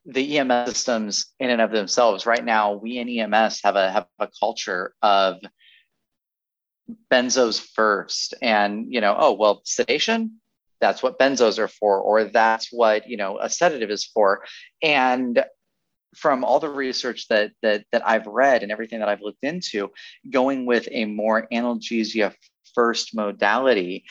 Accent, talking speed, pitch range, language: American, 155 wpm, 105-120 Hz, English